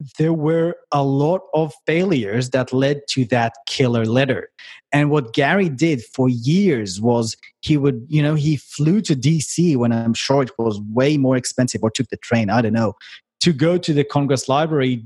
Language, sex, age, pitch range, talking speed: English, male, 30-49, 130-160 Hz, 190 wpm